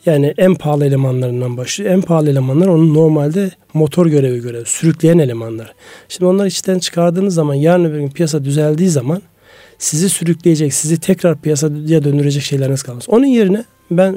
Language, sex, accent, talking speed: Turkish, male, native, 160 wpm